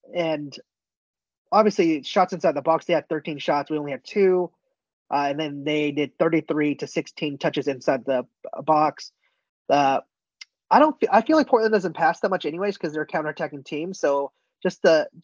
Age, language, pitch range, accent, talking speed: 20-39, English, 150-195 Hz, American, 175 wpm